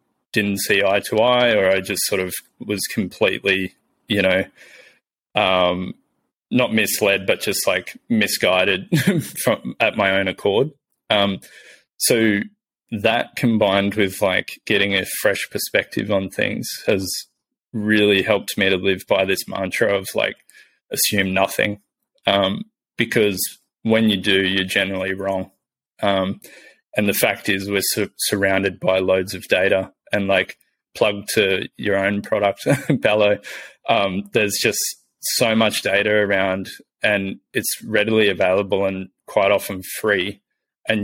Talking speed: 135 wpm